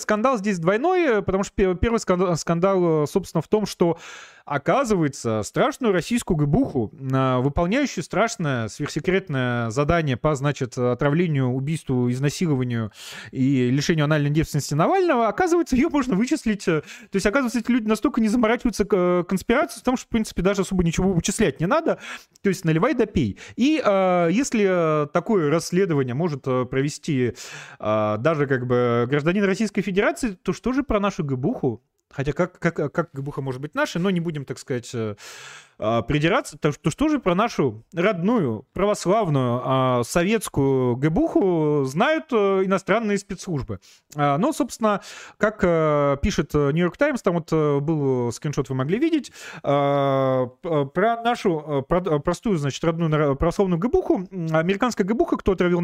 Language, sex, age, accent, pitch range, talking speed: Russian, male, 20-39, native, 140-210 Hz, 135 wpm